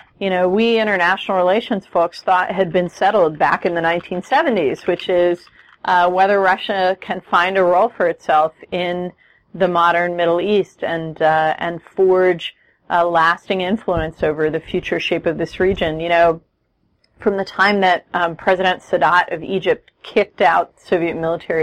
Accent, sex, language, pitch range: American, female, English, 165-205 Hz